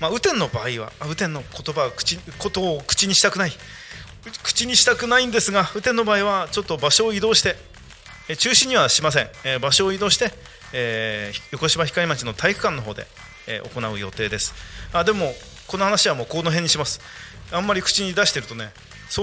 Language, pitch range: Japanese, 125-200 Hz